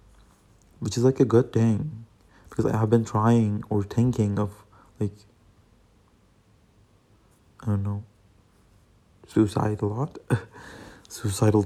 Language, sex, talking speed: English, male, 115 wpm